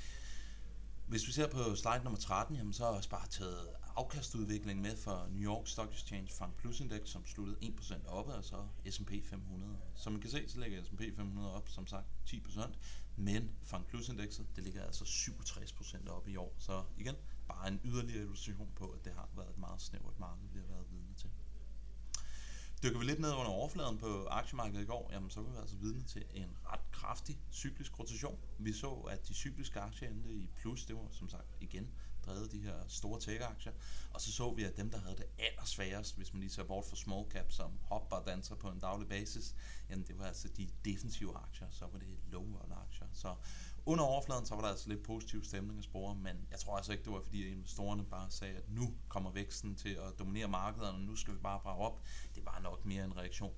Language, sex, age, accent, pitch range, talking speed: Danish, male, 30-49, native, 95-110 Hz, 220 wpm